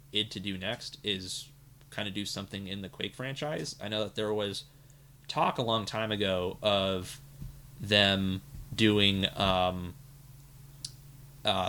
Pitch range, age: 95-120 Hz, 30-49